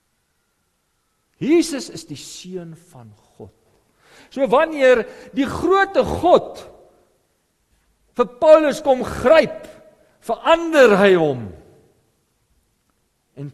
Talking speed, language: 90 wpm, English